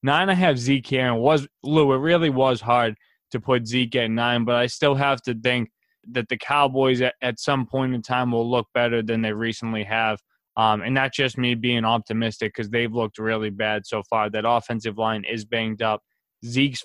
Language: English